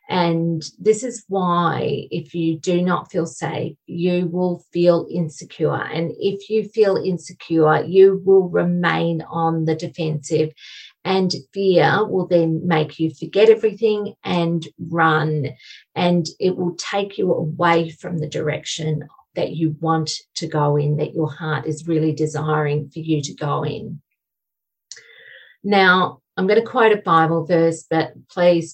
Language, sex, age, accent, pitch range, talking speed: English, female, 40-59, Australian, 155-185 Hz, 150 wpm